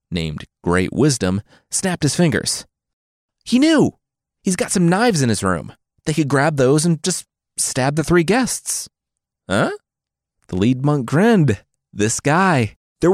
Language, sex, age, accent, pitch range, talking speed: English, male, 30-49, American, 105-160 Hz, 150 wpm